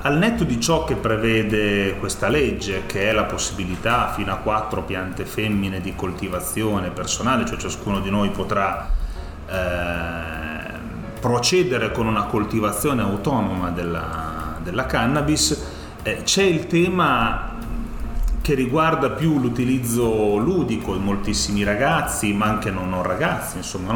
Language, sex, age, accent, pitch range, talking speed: Italian, male, 30-49, native, 95-125 Hz, 130 wpm